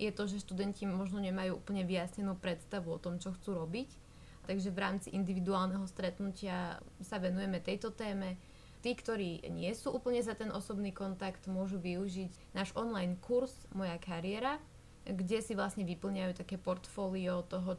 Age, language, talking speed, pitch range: 20-39, Slovak, 155 wpm, 180-195 Hz